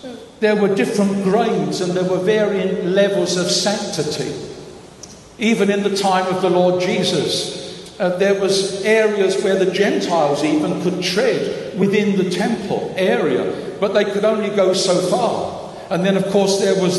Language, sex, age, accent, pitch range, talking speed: English, male, 60-79, British, 185-205 Hz, 165 wpm